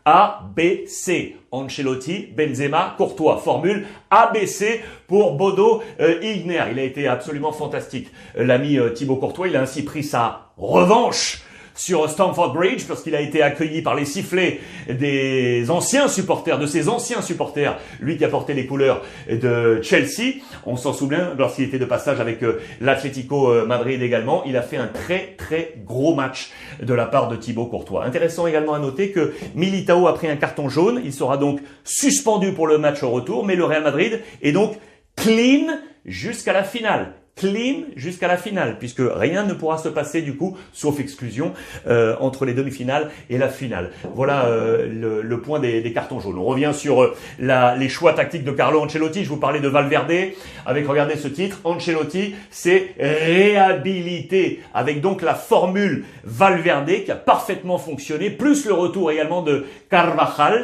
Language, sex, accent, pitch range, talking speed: French, male, French, 135-185 Hz, 175 wpm